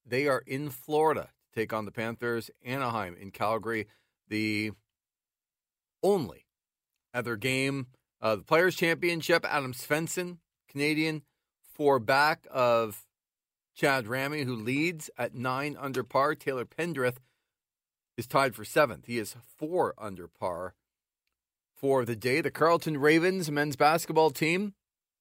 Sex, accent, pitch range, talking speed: male, American, 120-155 Hz, 130 wpm